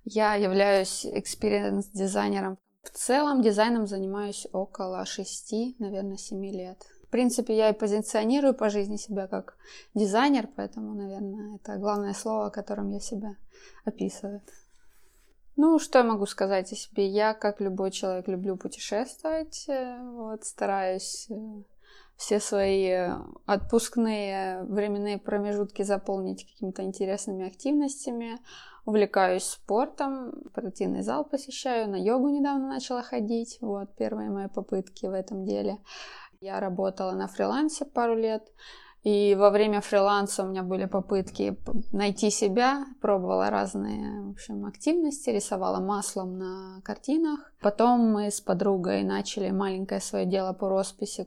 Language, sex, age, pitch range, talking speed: Russian, female, 20-39, 195-230 Hz, 125 wpm